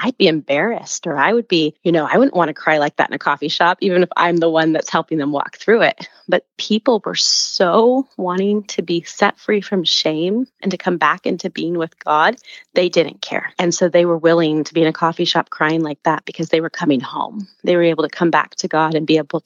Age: 30-49